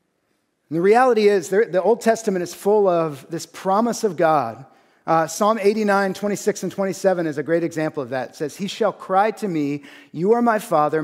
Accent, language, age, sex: American, English, 40-59, male